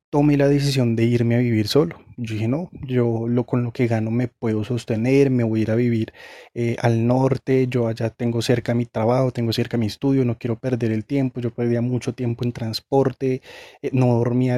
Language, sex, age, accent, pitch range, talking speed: Spanish, male, 20-39, Colombian, 115-135 Hz, 215 wpm